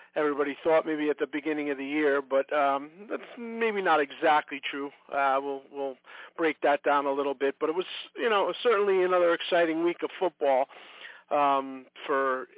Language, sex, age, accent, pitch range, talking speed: English, male, 40-59, American, 135-160 Hz, 180 wpm